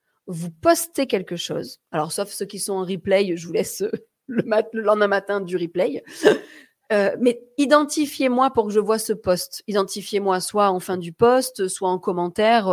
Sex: female